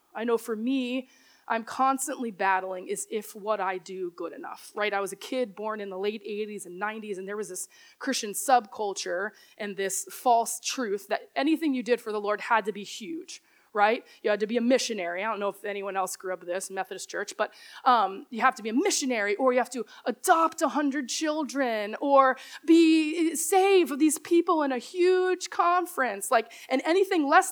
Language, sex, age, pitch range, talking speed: English, female, 20-39, 205-310 Hz, 205 wpm